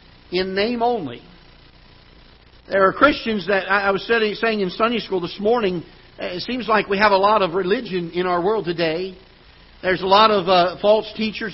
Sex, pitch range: male, 185-220 Hz